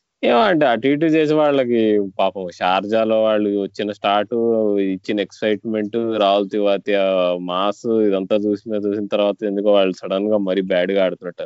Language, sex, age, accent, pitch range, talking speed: Telugu, male, 20-39, native, 90-115 Hz, 140 wpm